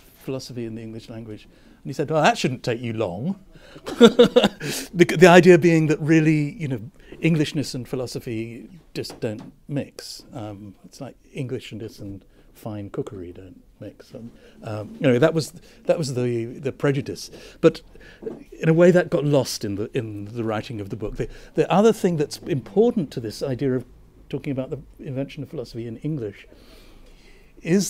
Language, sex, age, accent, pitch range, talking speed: English, male, 60-79, British, 115-160 Hz, 175 wpm